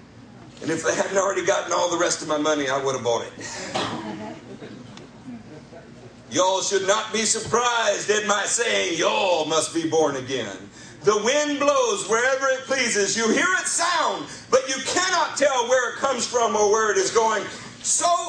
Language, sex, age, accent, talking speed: English, male, 50-69, American, 175 wpm